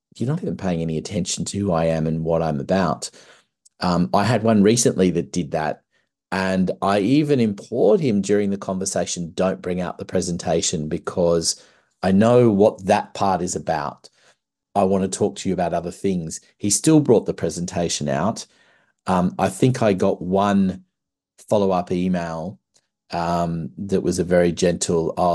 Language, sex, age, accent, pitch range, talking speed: English, male, 40-59, Australian, 85-100 Hz, 170 wpm